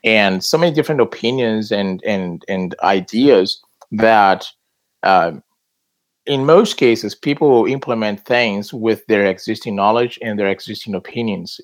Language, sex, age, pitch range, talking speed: English, male, 30-49, 105-125 Hz, 135 wpm